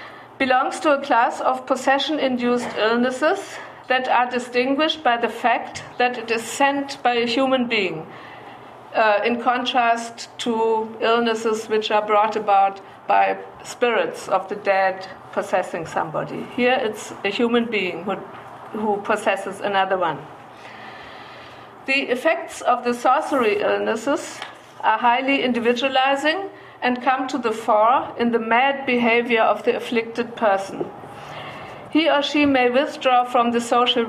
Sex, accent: female, German